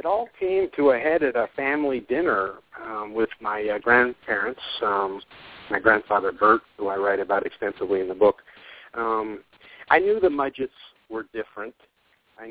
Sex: male